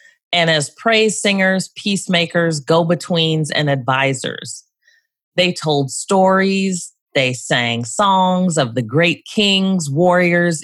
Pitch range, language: 145-185 Hz, English